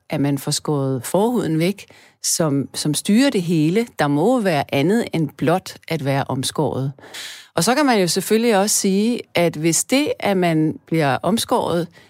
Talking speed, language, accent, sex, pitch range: 175 wpm, Danish, native, female, 150-225 Hz